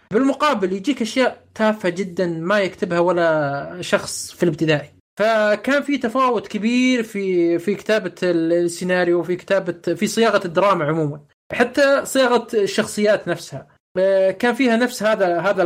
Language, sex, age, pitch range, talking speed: Arabic, male, 20-39, 170-220 Hz, 130 wpm